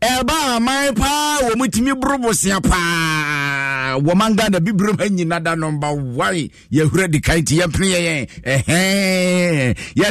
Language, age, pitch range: English, 50-69, 175-235 Hz